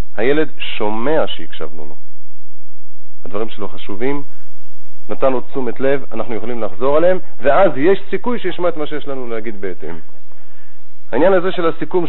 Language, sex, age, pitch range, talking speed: Hebrew, male, 50-69, 115-150 Hz, 140 wpm